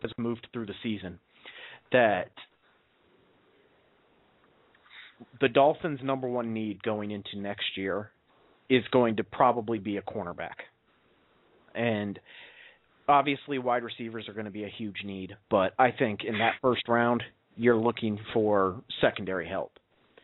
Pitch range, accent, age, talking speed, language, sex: 105-130 Hz, American, 30-49, 135 wpm, English, male